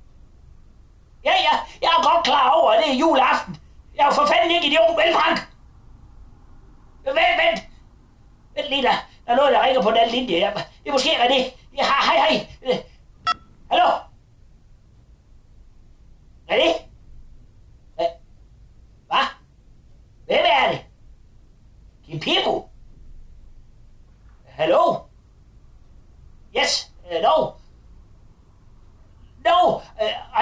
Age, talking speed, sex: 30-49, 110 wpm, male